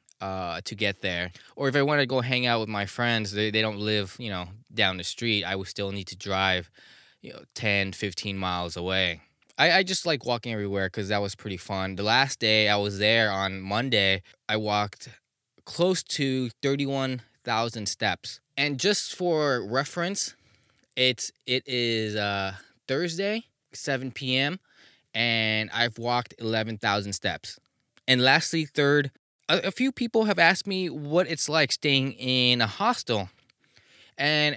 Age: 20-39